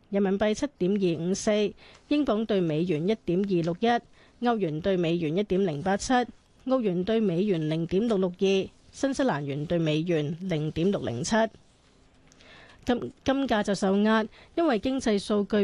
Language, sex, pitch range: Chinese, female, 180-230 Hz